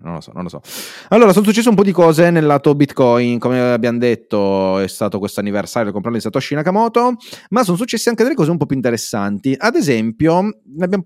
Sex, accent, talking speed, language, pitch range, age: male, native, 230 wpm, Italian, 105-170 Hz, 30-49